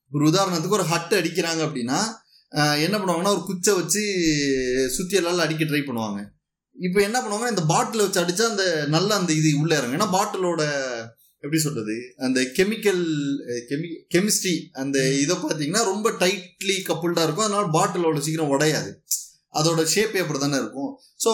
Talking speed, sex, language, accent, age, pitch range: 150 wpm, male, Tamil, native, 20-39, 140-195 Hz